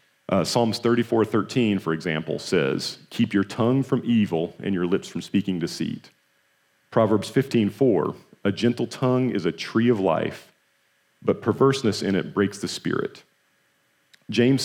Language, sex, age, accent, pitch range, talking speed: English, male, 40-59, American, 90-120 Hz, 145 wpm